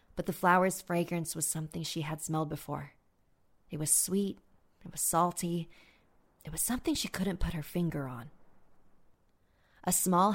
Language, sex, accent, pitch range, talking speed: English, female, American, 150-185 Hz, 155 wpm